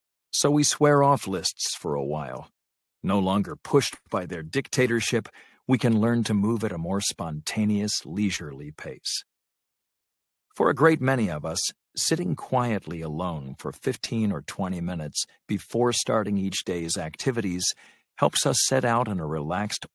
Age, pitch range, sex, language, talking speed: 50-69, 95-120 Hz, male, English, 155 wpm